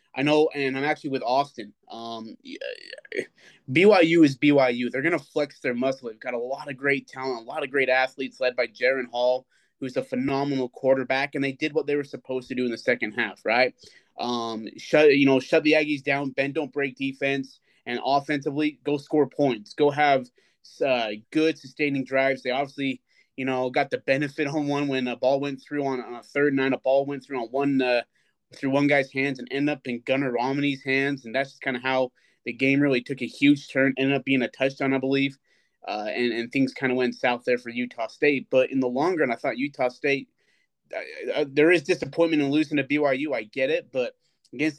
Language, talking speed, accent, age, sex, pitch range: English, 225 wpm, American, 20-39, male, 130-145 Hz